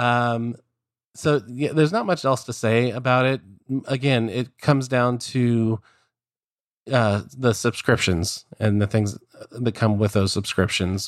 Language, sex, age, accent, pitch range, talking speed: English, male, 30-49, American, 105-125 Hz, 145 wpm